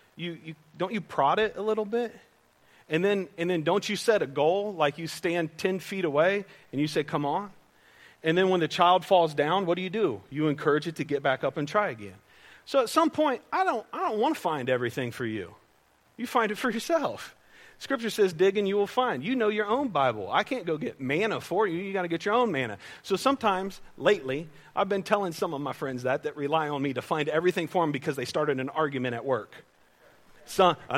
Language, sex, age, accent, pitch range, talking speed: English, male, 40-59, American, 145-200 Hz, 240 wpm